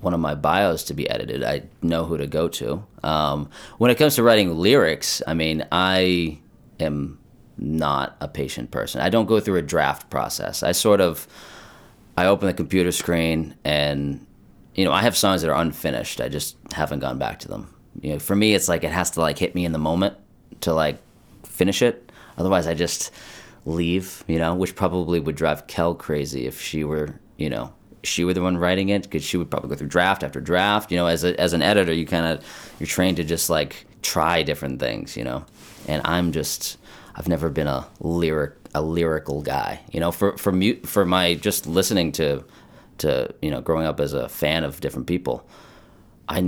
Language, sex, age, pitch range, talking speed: English, male, 30-49, 75-95 Hz, 210 wpm